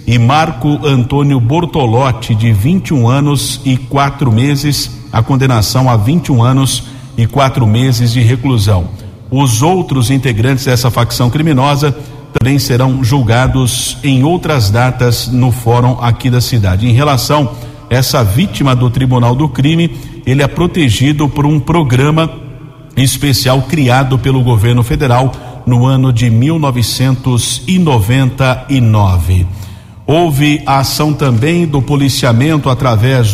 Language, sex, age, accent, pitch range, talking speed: Portuguese, male, 50-69, Brazilian, 120-145 Hz, 120 wpm